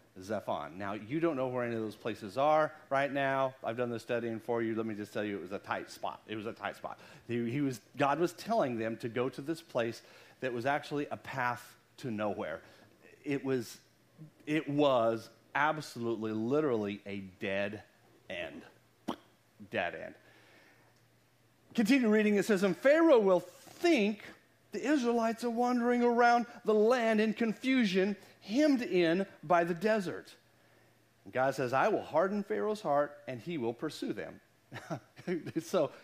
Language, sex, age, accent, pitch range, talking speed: English, male, 40-59, American, 130-210 Hz, 165 wpm